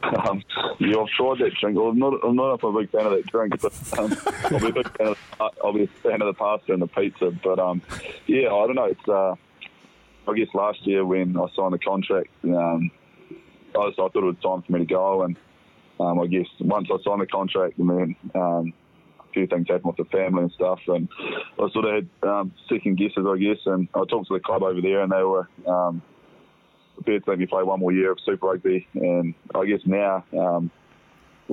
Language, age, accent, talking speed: English, 20-39, Australian, 235 wpm